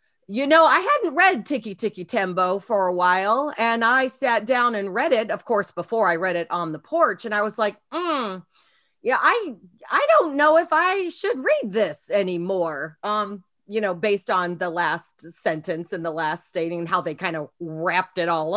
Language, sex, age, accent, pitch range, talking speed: English, female, 30-49, American, 185-240 Hz, 200 wpm